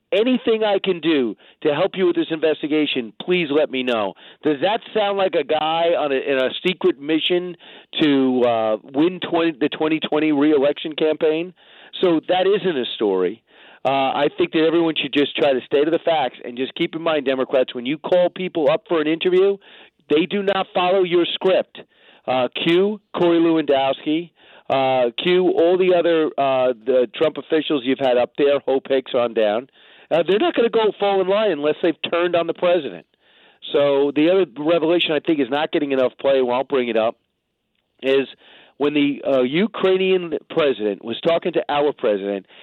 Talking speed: 190 wpm